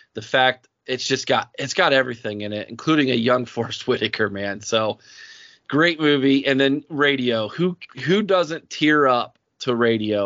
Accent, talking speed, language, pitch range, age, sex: American, 175 wpm, English, 110-130 Hz, 20-39, male